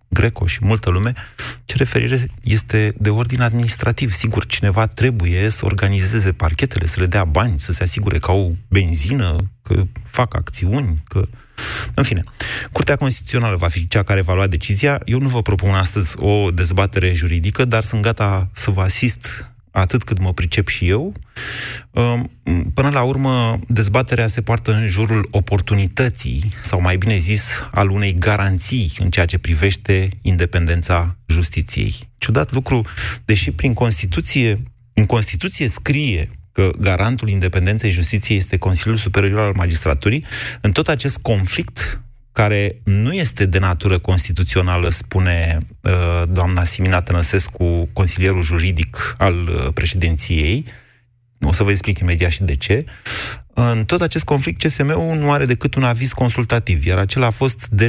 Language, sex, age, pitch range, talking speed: Romanian, male, 30-49, 90-115 Hz, 145 wpm